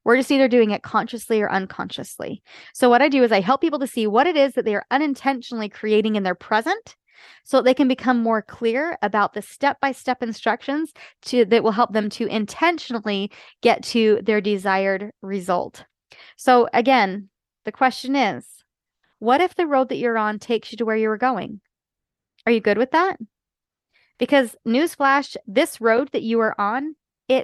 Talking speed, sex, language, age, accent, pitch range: 185 wpm, female, English, 20-39, American, 210-265 Hz